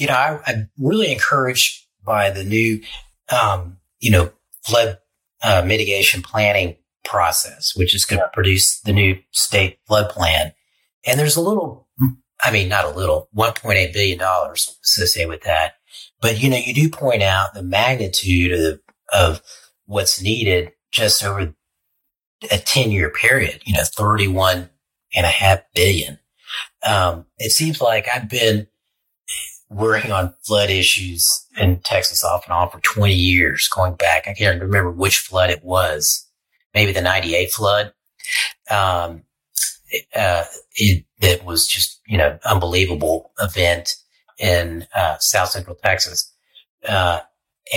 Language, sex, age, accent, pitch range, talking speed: English, male, 40-59, American, 90-110 Hz, 145 wpm